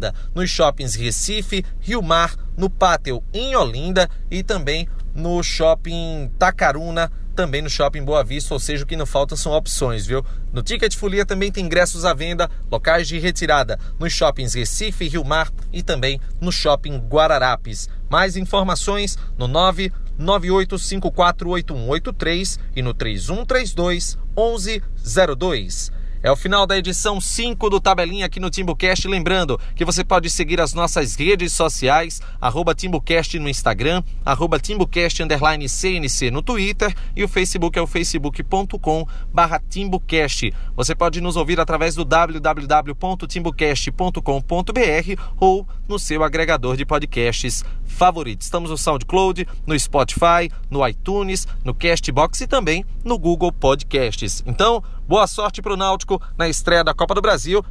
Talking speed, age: 135 wpm, 30-49